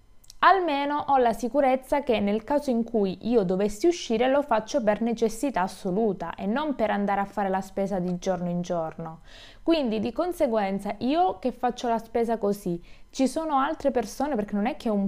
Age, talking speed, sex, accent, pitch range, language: 20-39, 190 wpm, female, native, 195-255 Hz, Italian